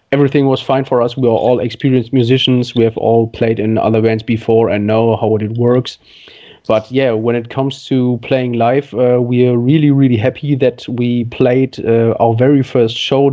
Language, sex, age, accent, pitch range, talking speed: English, male, 30-49, German, 115-135 Hz, 205 wpm